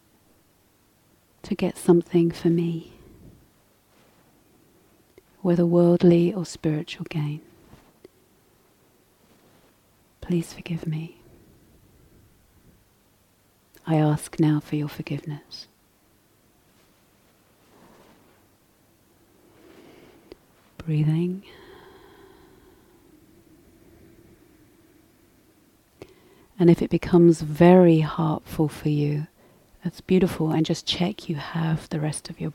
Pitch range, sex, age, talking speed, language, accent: 155-180 Hz, female, 40-59, 70 wpm, English, British